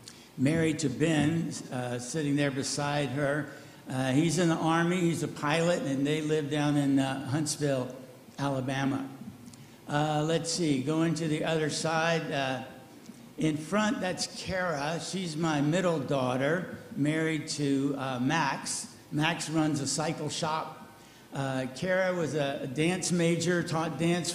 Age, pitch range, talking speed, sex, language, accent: 60-79, 135-160 Hz, 145 wpm, male, English, American